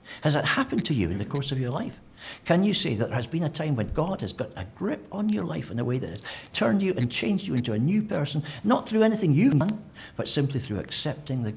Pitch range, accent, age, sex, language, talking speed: 125-170 Hz, British, 60-79, male, English, 275 wpm